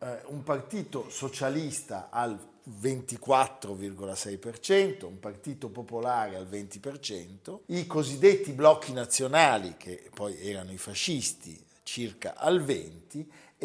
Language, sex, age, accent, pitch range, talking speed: Italian, male, 50-69, native, 115-145 Hz, 95 wpm